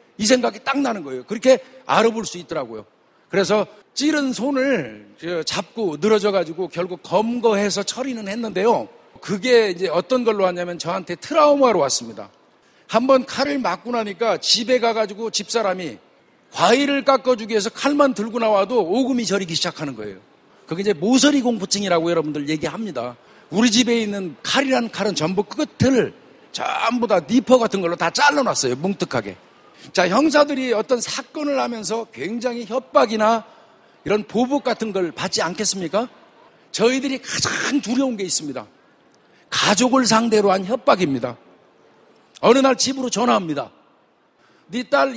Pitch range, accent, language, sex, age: 195-255 Hz, native, Korean, male, 50-69